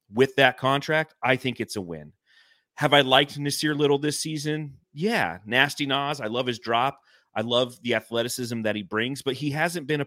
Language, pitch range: English, 110-140 Hz